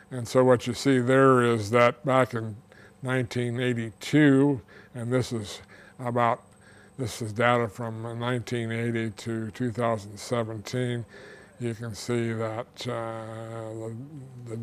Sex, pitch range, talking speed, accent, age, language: male, 110-125 Hz, 120 wpm, American, 60-79, English